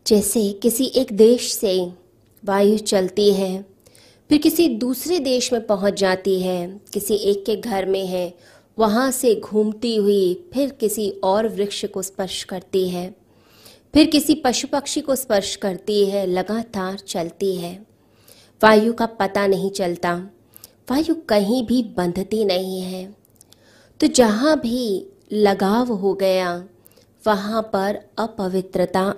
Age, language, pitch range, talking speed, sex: 20-39, Hindi, 185-225 Hz, 135 wpm, female